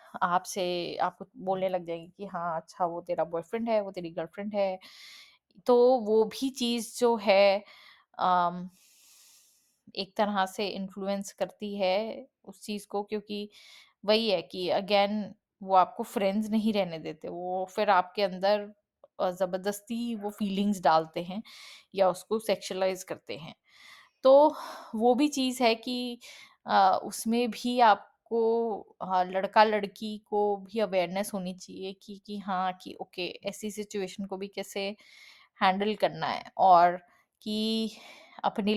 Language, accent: Hindi, native